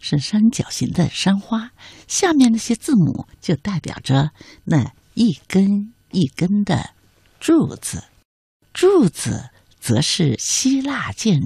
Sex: female